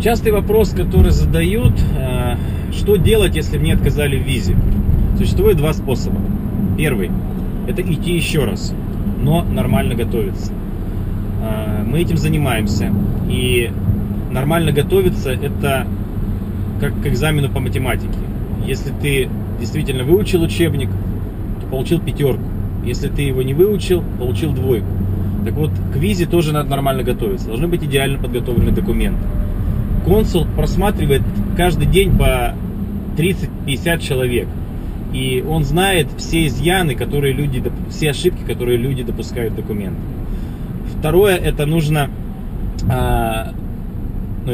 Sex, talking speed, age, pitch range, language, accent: male, 120 wpm, 30-49, 95-130 Hz, Russian, native